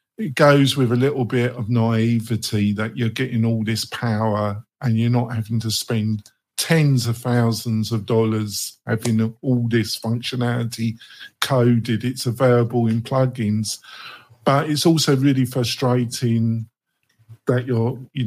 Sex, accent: male, British